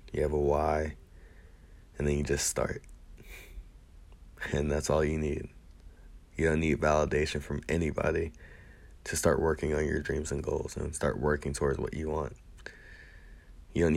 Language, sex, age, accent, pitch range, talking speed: English, male, 20-39, American, 75-80 Hz, 160 wpm